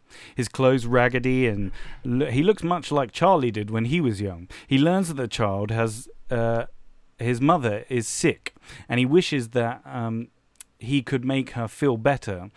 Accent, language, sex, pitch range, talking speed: British, English, male, 110-135 Hz, 170 wpm